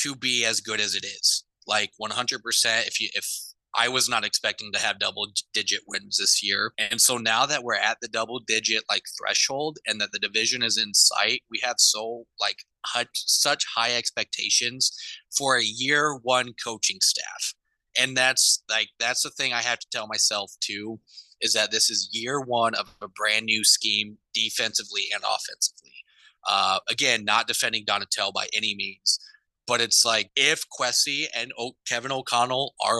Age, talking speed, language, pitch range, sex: 30-49, 180 wpm, English, 105-125 Hz, male